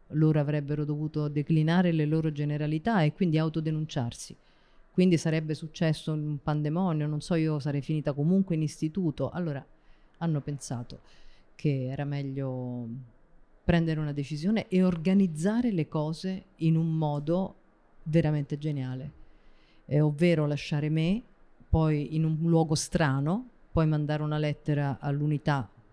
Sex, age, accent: female, 40-59, native